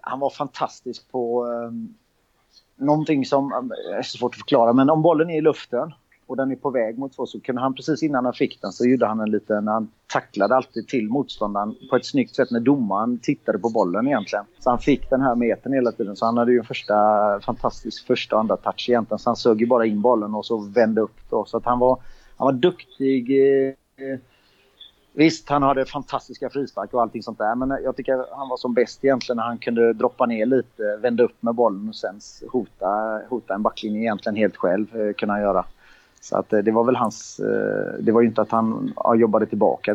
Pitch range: 110-135 Hz